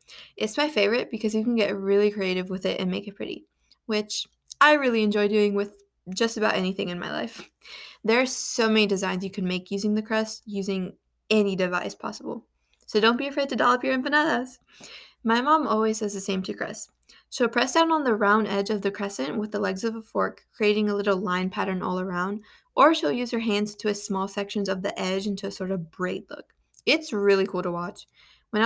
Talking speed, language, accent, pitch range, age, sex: 220 wpm, English, American, 195-235 Hz, 20-39, female